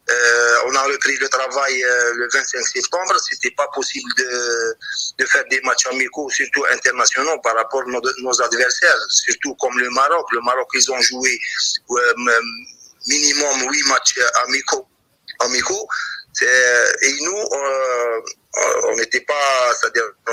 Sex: male